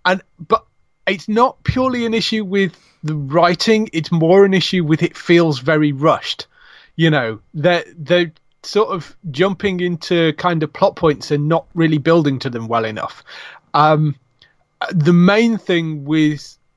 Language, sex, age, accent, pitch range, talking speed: English, male, 30-49, British, 140-180 Hz, 155 wpm